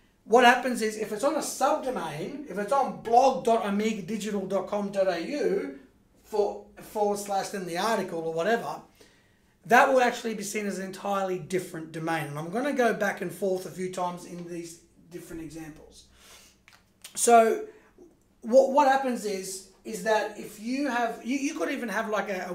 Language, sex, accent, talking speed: English, male, Australian, 165 wpm